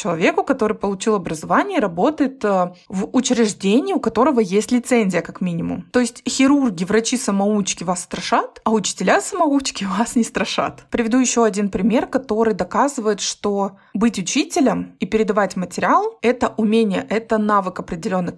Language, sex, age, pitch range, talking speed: Russian, female, 20-39, 195-255 Hz, 140 wpm